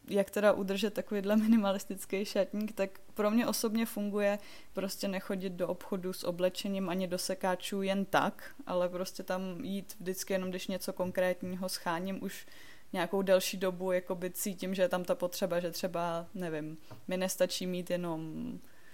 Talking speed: 160 wpm